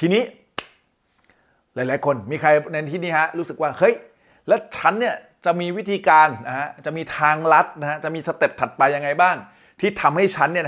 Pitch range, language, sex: 115-155 Hz, Thai, male